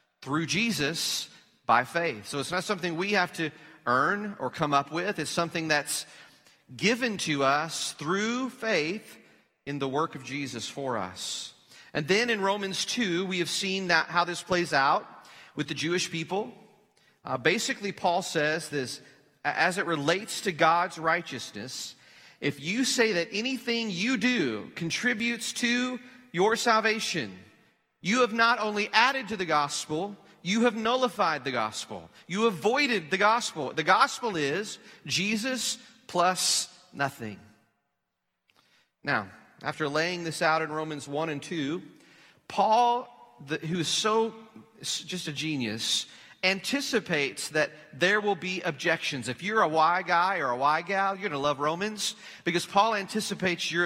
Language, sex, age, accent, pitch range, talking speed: English, male, 40-59, American, 150-210 Hz, 150 wpm